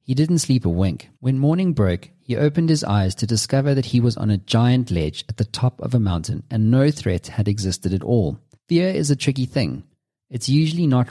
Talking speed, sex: 225 wpm, male